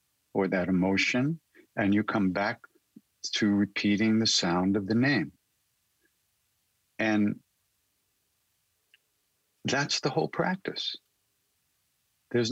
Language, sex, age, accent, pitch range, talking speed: English, male, 50-69, American, 100-130 Hz, 95 wpm